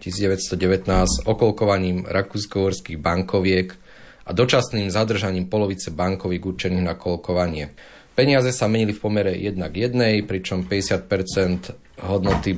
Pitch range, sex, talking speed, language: 90-105 Hz, male, 110 wpm, Slovak